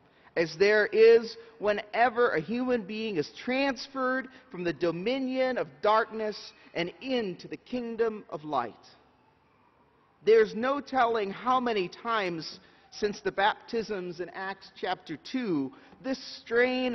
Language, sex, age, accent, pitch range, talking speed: English, male, 40-59, American, 185-245 Hz, 125 wpm